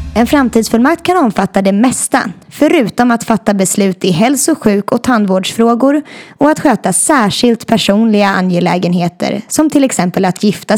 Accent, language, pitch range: native, Swedish, 190-260 Hz